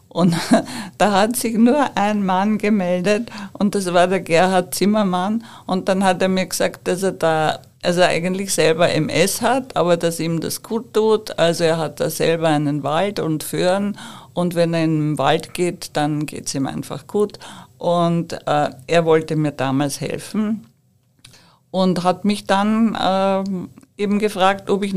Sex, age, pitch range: female, 50-69, 155-195 Hz